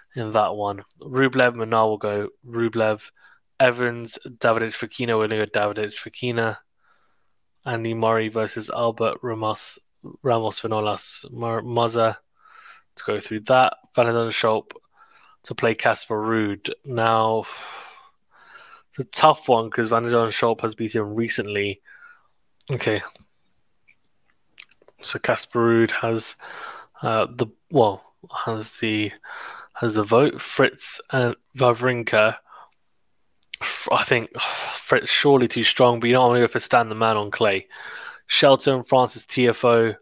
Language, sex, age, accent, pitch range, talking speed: English, male, 20-39, British, 110-120 Hz, 130 wpm